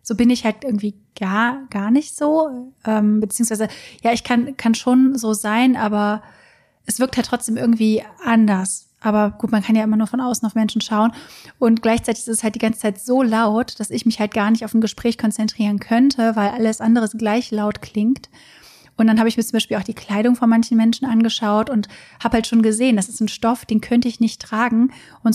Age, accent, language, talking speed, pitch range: 30-49, German, German, 220 wpm, 215-235 Hz